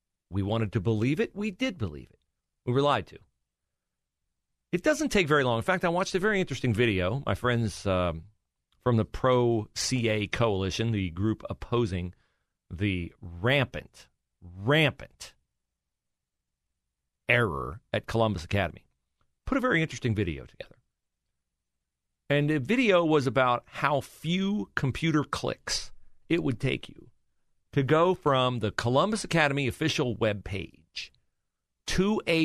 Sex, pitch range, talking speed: male, 90-145 Hz, 135 wpm